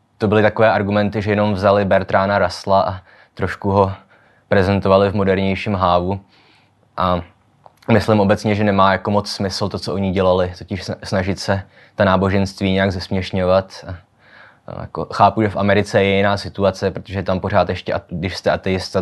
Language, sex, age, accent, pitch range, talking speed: Czech, male, 20-39, native, 95-110 Hz, 160 wpm